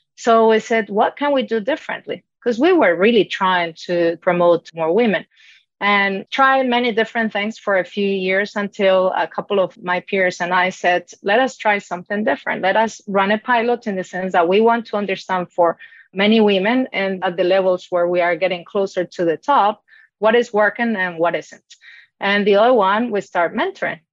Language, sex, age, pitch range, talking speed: English, female, 30-49, 180-220 Hz, 200 wpm